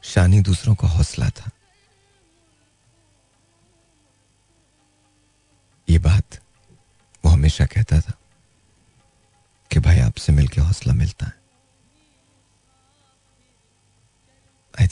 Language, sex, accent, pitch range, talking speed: Hindi, male, native, 90-110 Hz, 75 wpm